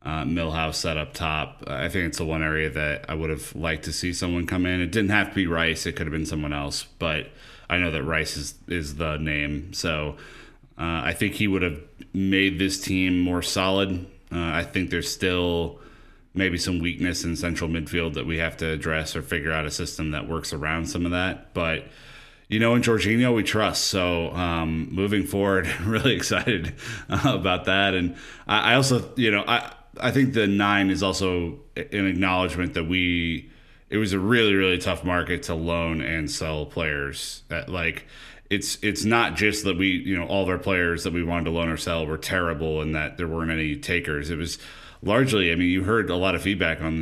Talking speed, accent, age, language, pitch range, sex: 215 wpm, American, 30-49, English, 80-95 Hz, male